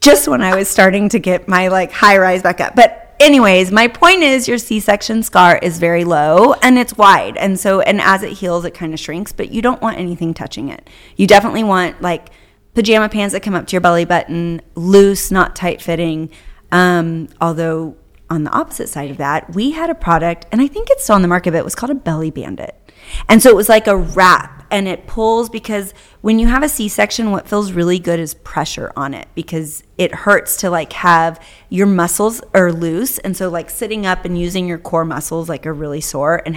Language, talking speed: English, 225 wpm